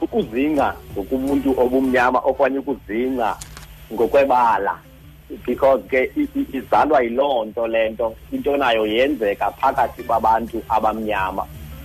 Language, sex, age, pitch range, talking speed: English, male, 50-69, 105-140 Hz, 90 wpm